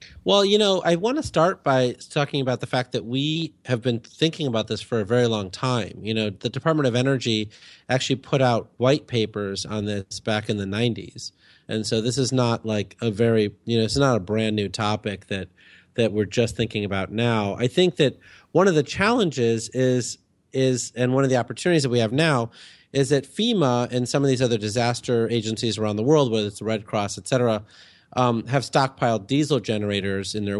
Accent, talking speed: American, 210 wpm